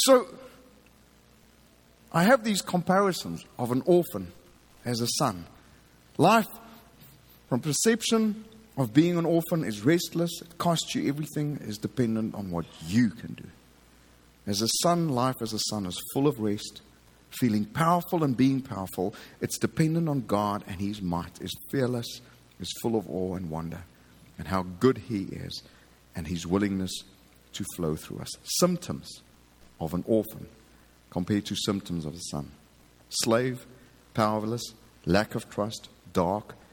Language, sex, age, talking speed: English, male, 50-69, 145 wpm